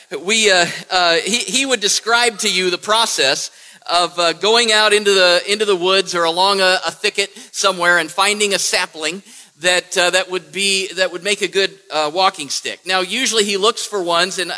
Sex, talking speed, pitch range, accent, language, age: male, 205 wpm, 160-200 Hz, American, English, 50-69